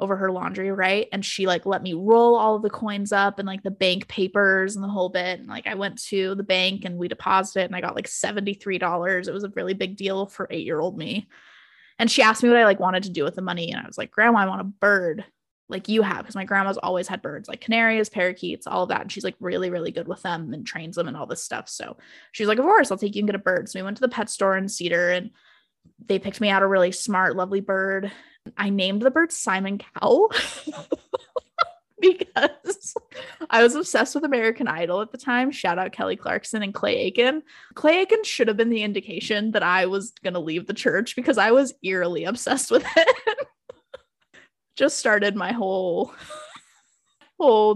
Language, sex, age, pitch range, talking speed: English, female, 20-39, 190-250 Hz, 230 wpm